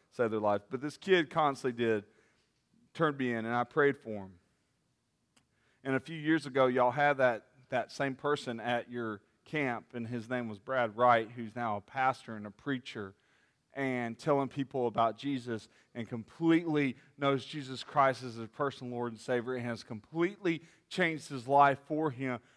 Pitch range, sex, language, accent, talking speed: 125-200 Hz, male, English, American, 180 wpm